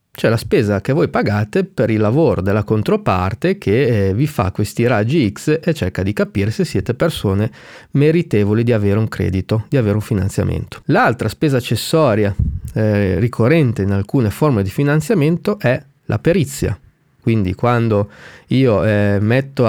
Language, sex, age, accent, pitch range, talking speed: Italian, male, 30-49, native, 105-140 Hz, 160 wpm